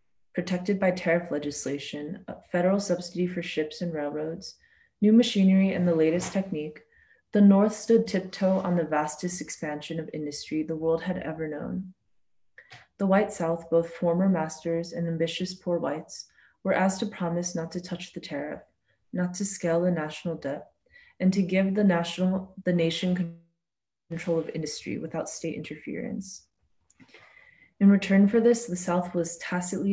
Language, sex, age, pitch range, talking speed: English, female, 20-39, 165-195 Hz, 150 wpm